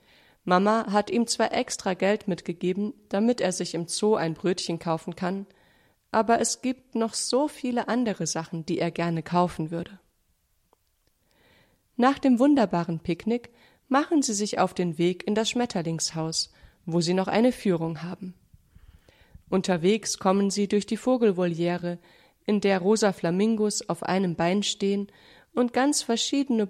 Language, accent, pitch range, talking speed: German, German, 175-225 Hz, 145 wpm